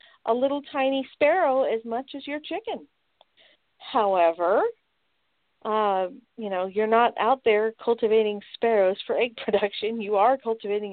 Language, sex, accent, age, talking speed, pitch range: English, female, American, 40-59, 135 wpm, 185-255 Hz